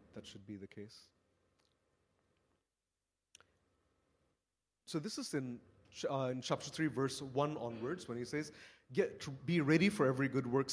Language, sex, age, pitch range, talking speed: English, male, 30-49, 105-145 Hz, 150 wpm